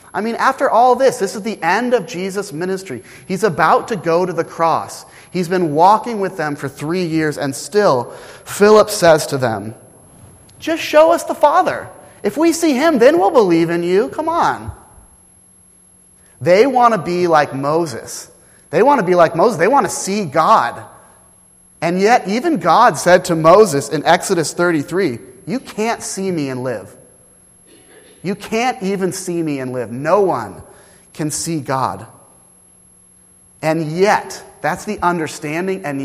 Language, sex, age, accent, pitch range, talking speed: English, male, 30-49, American, 130-195 Hz, 165 wpm